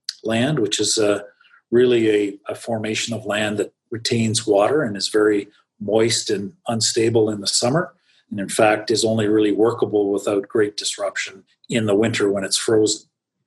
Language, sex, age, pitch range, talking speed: English, male, 40-59, 105-115 Hz, 170 wpm